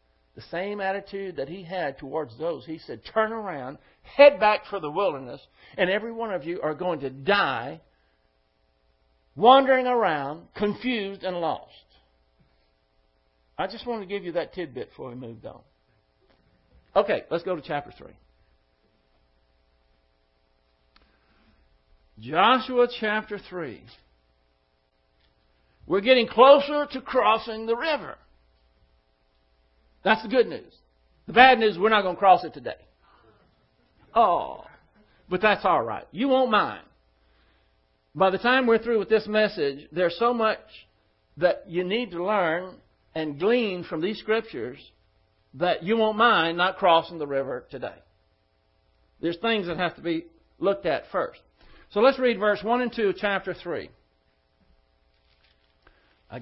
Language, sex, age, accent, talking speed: English, male, 60-79, American, 140 wpm